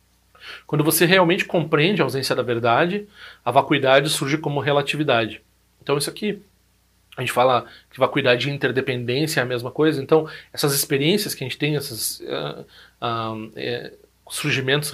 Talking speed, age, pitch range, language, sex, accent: 155 wpm, 40-59, 130-165 Hz, Portuguese, male, Brazilian